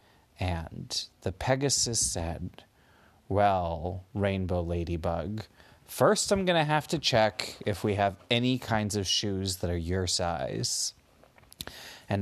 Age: 30-49